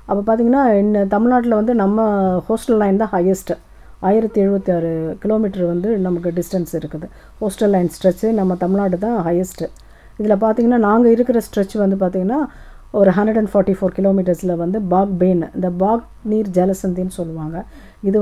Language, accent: English, Indian